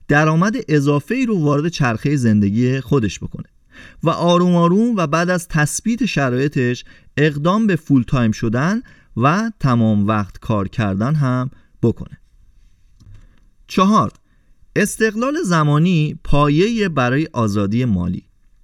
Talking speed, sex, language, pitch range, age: 115 wpm, male, Persian, 125-180 Hz, 30-49